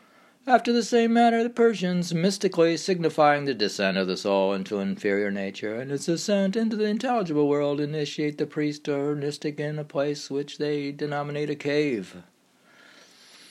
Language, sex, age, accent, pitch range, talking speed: English, male, 60-79, American, 125-180 Hz, 160 wpm